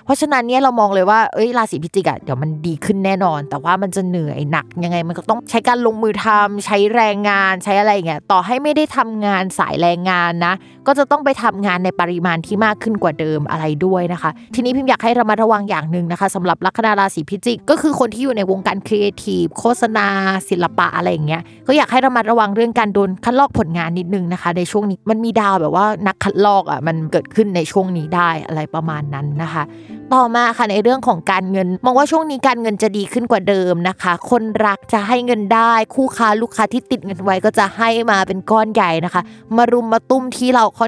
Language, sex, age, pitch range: Thai, female, 20-39, 180-235 Hz